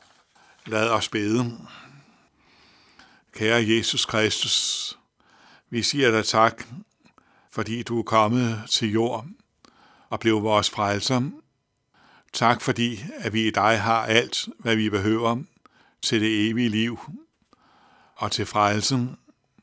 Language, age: Danish, 60-79